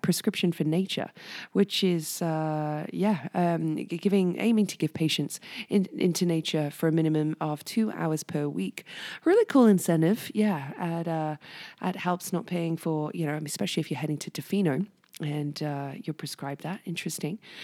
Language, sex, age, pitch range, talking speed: English, female, 20-39, 155-195 Hz, 165 wpm